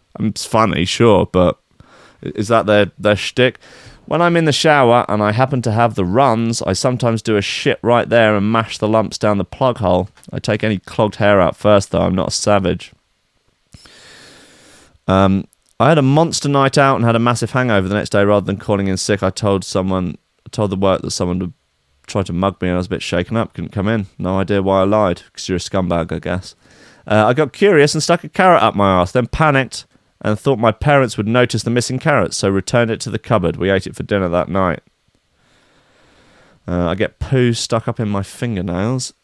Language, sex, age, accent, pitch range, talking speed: English, male, 30-49, British, 95-125 Hz, 225 wpm